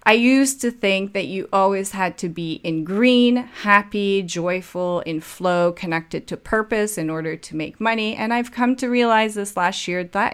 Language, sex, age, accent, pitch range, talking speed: English, female, 30-49, American, 170-210 Hz, 190 wpm